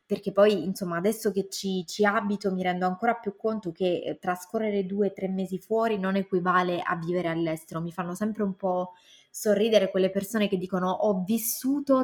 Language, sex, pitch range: Italian, female, 185-225 Hz